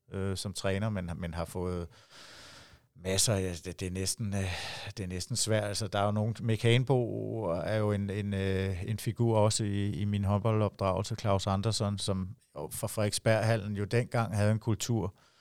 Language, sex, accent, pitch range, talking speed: Danish, male, native, 95-115 Hz, 160 wpm